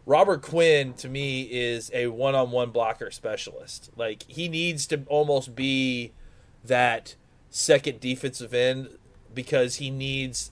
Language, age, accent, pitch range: English, 30-49, American, 125-150 Hz